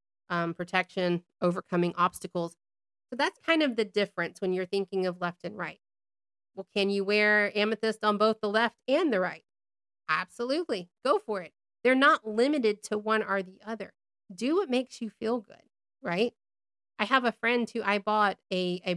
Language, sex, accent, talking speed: English, female, American, 180 wpm